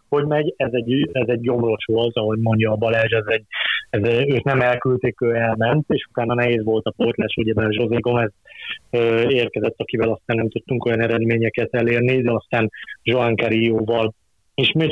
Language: Hungarian